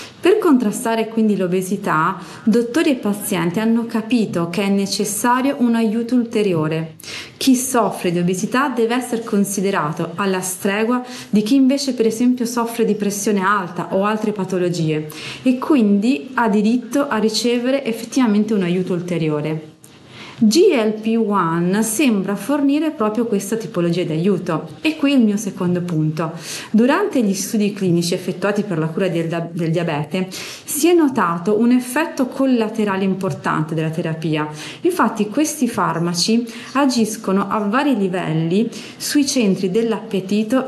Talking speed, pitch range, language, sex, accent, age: 135 wpm, 185-240 Hz, Italian, female, native, 30-49